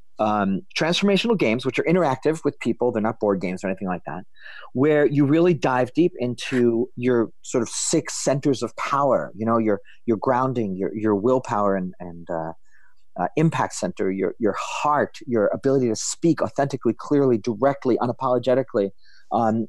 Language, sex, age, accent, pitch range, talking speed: English, male, 40-59, American, 120-160 Hz, 170 wpm